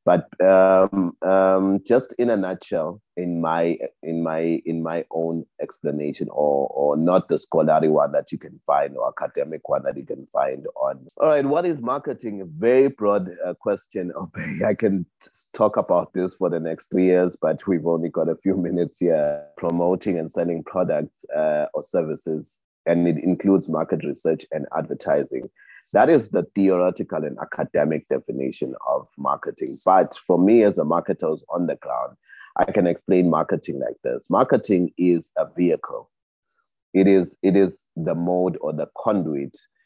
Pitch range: 85-100 Hz